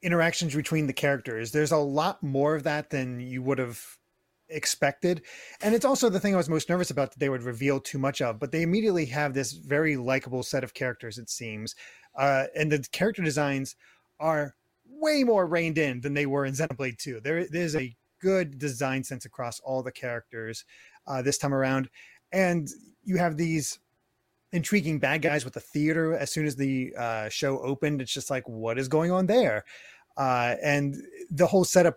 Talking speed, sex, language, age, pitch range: 195 wpm, male, English, 30-49, 135-175 Hz